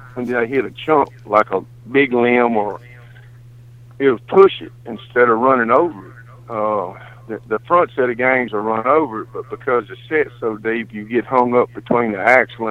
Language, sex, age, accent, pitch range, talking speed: English, male, 50-69, American, 115-125 Hz, 210 wpm